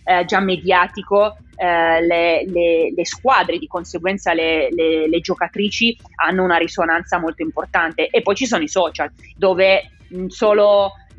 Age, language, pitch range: 20-39, Italian, 170-205 Hz